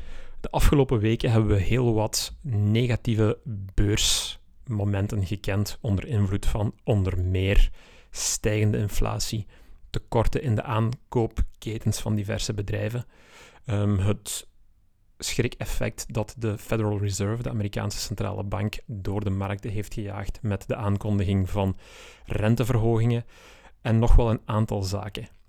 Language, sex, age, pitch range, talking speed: Dutch, male, 30-49, 100-120 Hz, 120 wpm